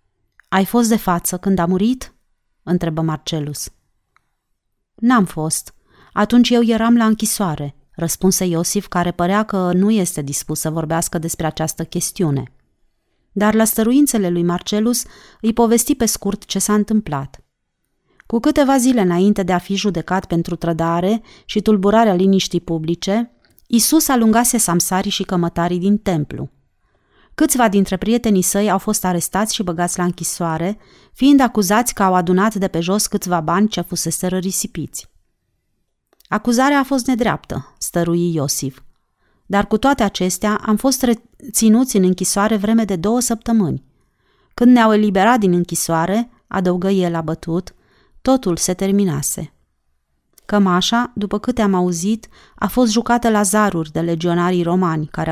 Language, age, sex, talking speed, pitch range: Romanian, 30-49, female, 140 wpm, 170-220 Hz